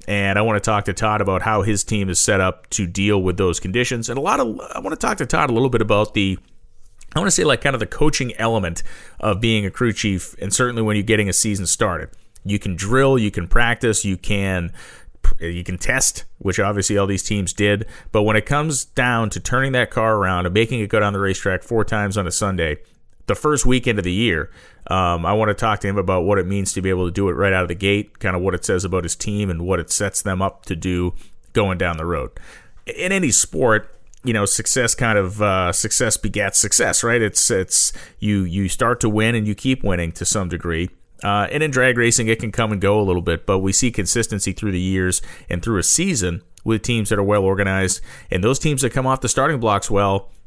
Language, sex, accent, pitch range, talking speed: English, male, American, 95-115 Hz, 250 wpm